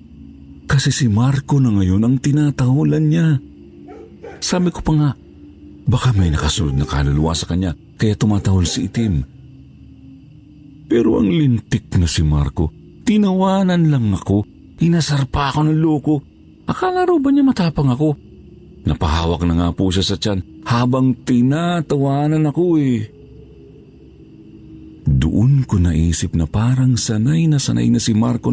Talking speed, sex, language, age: 135 wpm, male, Filipino, 50-69